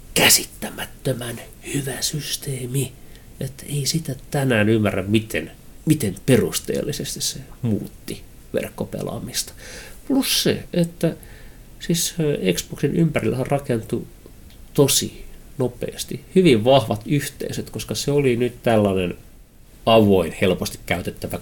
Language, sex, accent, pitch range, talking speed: Finnish, male, native, 90-125 Hz, 95 wpm